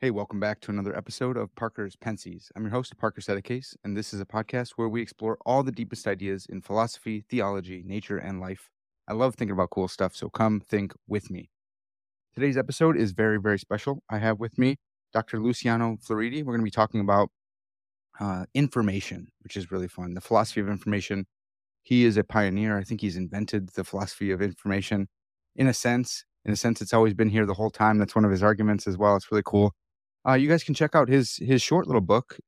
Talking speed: 220 wpm